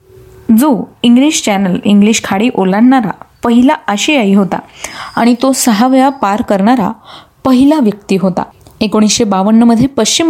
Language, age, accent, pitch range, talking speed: Marathi, 20-39, native, 210-260 Hz, 120 wpm